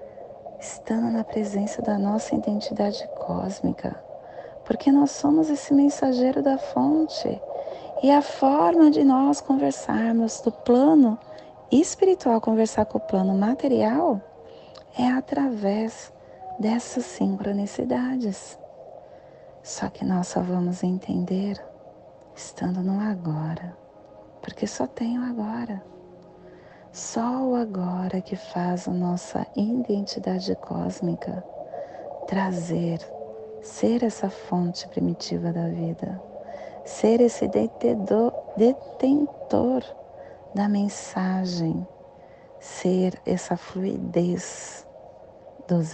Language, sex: Portuguese, female